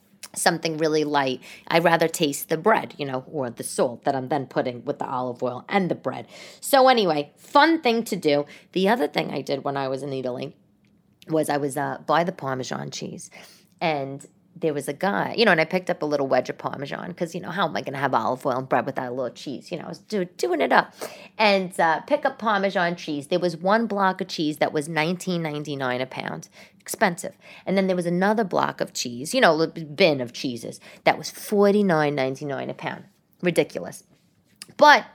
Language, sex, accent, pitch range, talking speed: English, female, American, 145-195 Hz, 225 wpm